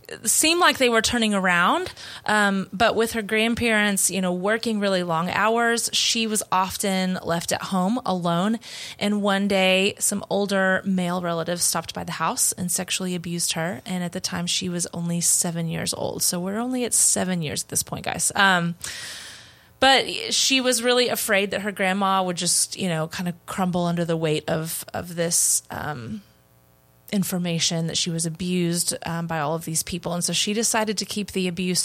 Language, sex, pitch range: English, female, 170-205 Hz